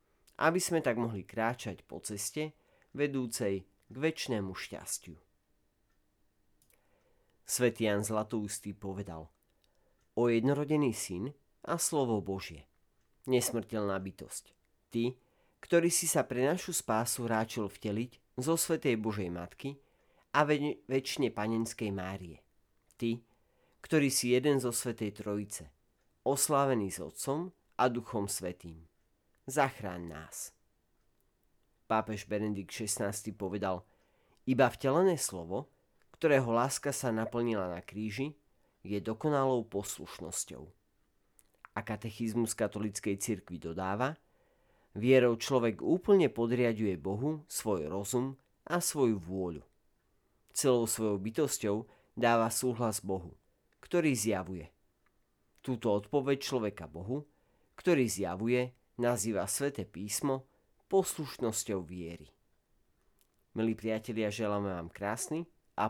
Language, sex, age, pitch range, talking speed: Slovak, male, 40-59, 100-130 Hz, 100 wpm